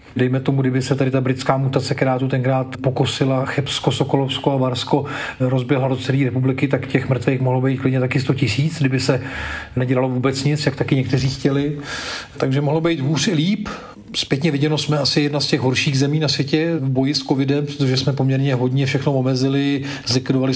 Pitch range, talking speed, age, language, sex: 130-145 Hz, 195 wpm, 40-59, Czech, male